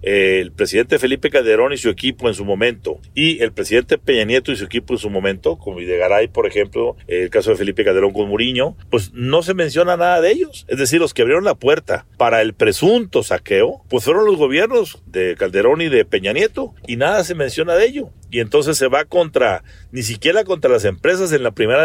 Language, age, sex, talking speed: Spanish, 50-69, male, 215 wpm